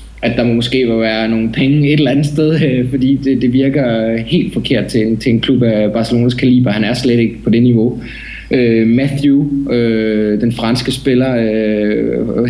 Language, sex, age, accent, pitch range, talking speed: Danish, male, 20-39, native, 110-130 Hz, 195 wpm